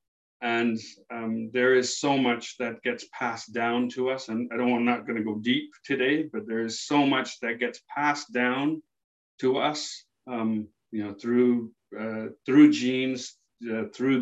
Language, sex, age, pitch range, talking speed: English, male, 40-59, 110-125 Hz, 175 wpm